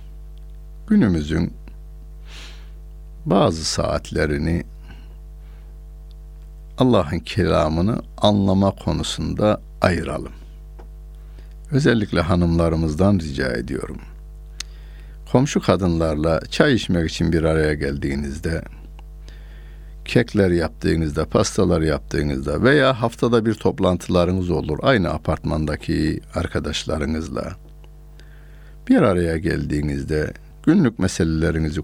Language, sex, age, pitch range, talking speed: Turkish, male, 60-79, 75-95 Hz, 70 wpm